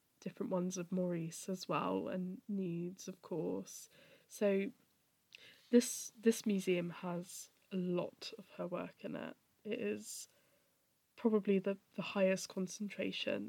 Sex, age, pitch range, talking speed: female, 10-29, 185-210 Hz, 130 wpm